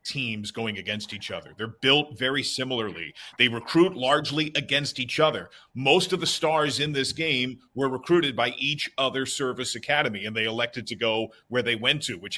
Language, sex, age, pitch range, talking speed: English, male, 40-59, 120-150 Hz, 190 wpm